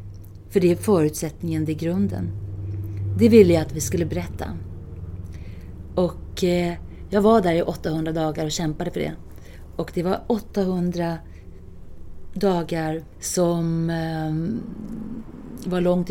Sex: female